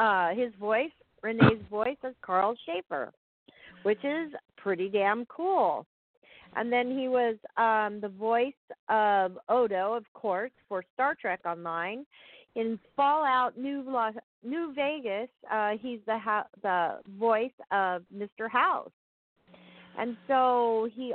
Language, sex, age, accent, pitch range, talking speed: English, female, 40-59, American, 205-260 Hz, 125 wpm